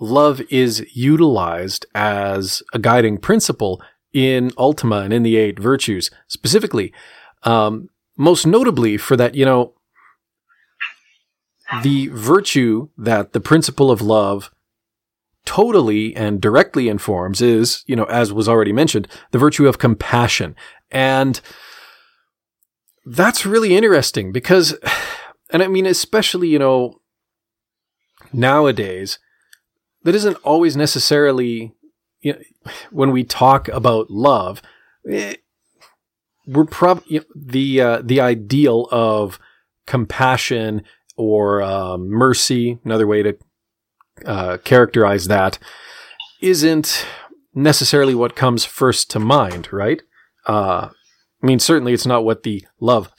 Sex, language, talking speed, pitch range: male, English, 110 wpm, 110-145 Hz